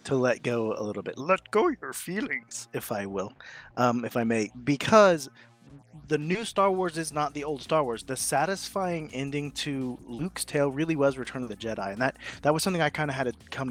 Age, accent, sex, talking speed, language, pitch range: 30-49, American, male, 225 wpm, English, 120-150 Hz